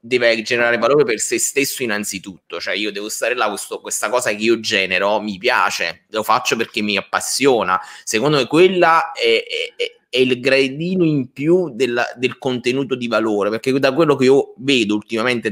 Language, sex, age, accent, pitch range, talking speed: Italian, male, 20-39, native, 100-130 Hz, 170 wpm